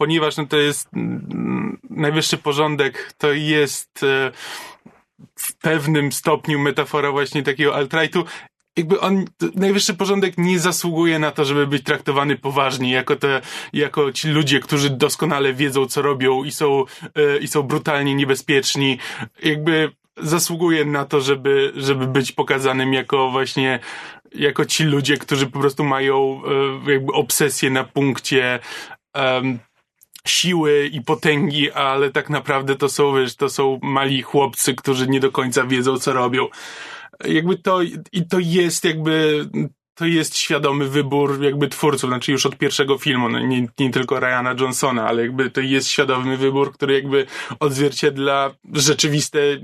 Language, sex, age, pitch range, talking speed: Polish, male, 20-39, 135-150 Hz, 145 wpm